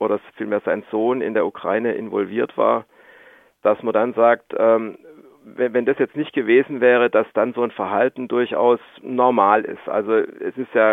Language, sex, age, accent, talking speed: German, male, 40-59, German, 170 wpm